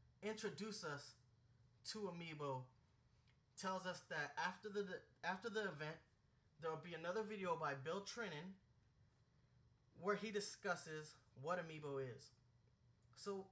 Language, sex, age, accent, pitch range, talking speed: English, male, 20-39, American, 130-185 Hz, 120 wpm